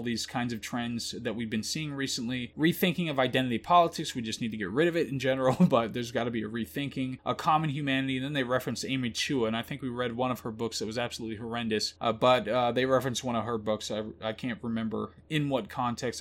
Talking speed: 250 wpm